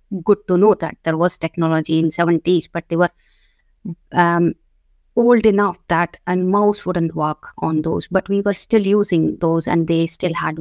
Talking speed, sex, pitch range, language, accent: 185 wpm, female, 170-205 Hz, English, Indian